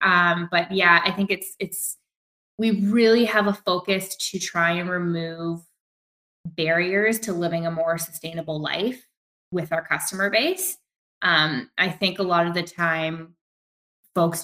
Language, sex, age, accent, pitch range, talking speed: English, female, 20-39, American, 165-200 Hz, 150 wpm